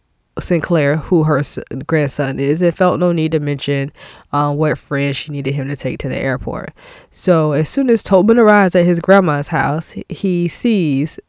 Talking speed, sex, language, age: 180 wpm, female, English, 10-29